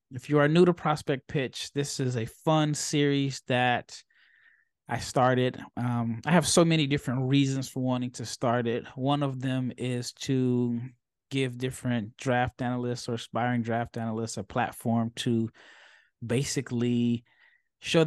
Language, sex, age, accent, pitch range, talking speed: English, male, 20-39, American, 120-140 Hz, 150 wpm